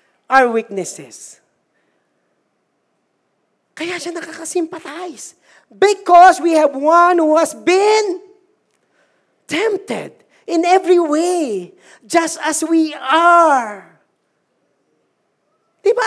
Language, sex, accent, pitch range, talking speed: Filipino, male, native, 285-360 Hz, 80 wpm